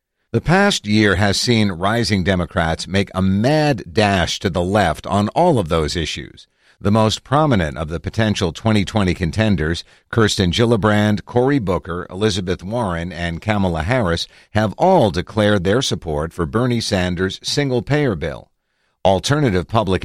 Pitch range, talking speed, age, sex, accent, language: 90-115 Hz, 145 wpm, 50-69, male, American, English